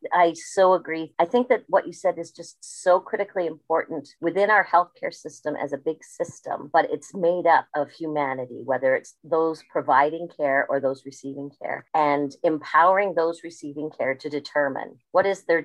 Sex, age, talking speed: female, 40-59, 180 wpm